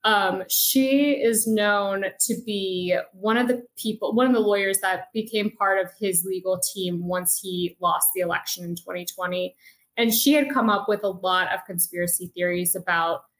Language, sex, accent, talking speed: English, female, American, 180 wpm